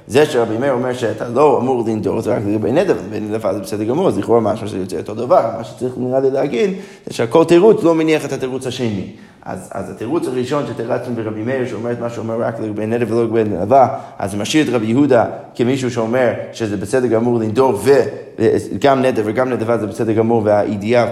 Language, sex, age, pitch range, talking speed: Hebrew, male, 20-39, 115-145 Hz, 205 wpm